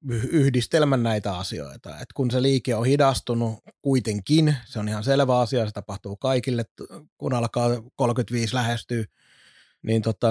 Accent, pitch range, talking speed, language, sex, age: native, 120-145 Hz, 140 wpm, Finnish, male, 30-49